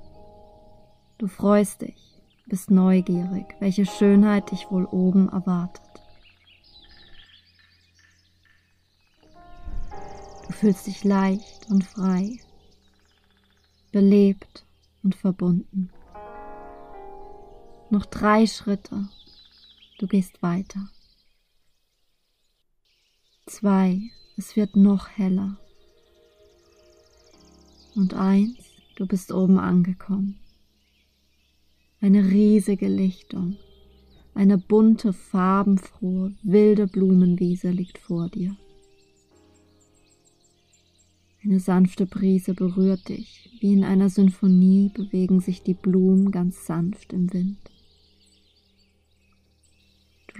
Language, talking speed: German, 80 wpm